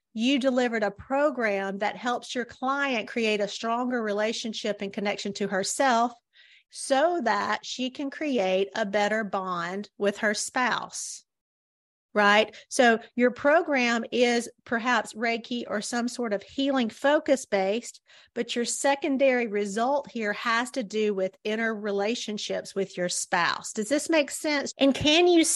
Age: 40-59